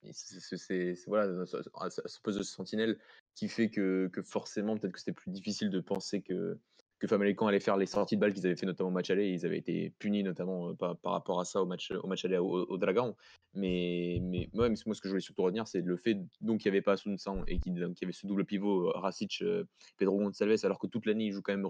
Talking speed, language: 255 wpm, French